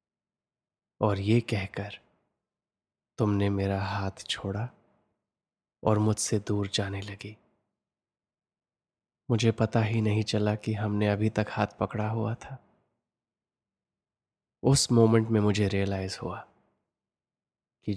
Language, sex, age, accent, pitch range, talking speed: Hindi, male, 20-39, native, 105-115 Hz, 105 wpm